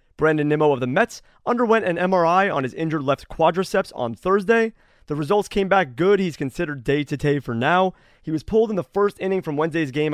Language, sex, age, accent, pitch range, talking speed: English, male, 30-49, American, 130-185 Hz, 205 wpm